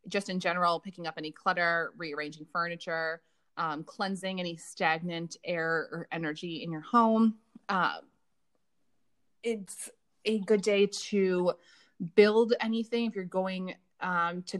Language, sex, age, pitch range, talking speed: English, female, 20-39, 165-205 Hz, 130 wpm